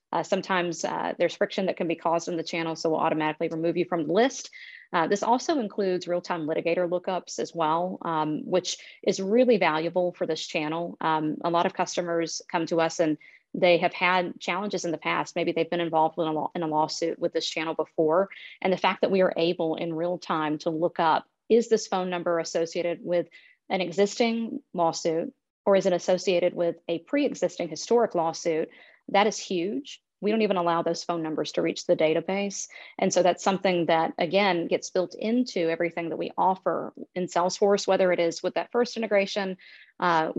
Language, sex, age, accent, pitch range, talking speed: English, female, 40-59, American, 165-185 Hz, 200 wpm